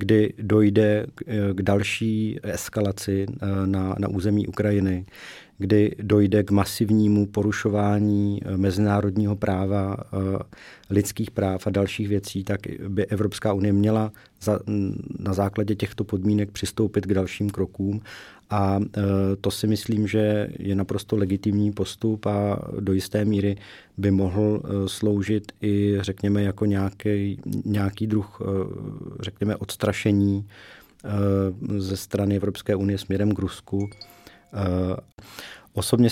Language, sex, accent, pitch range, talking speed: Czech, male, native, 100-105 Hz, 110 wpm